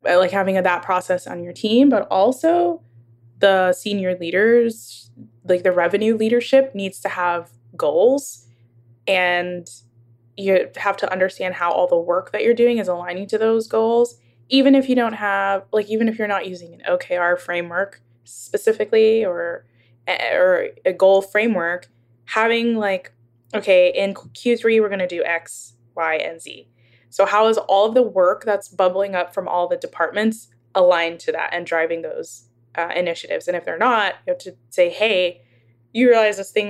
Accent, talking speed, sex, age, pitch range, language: American, 175 wpm, female, 10-29, 165-220 Hz, English